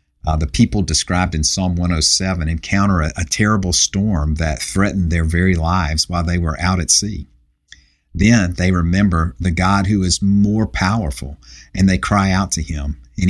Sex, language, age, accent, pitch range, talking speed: male, English, 50-69, American, 75-95 Hz, 175 wpm